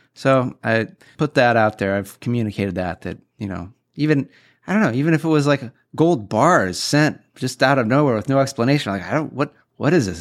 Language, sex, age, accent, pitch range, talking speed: English, male, 30-49, American, 110-140 Hz, 225 wpm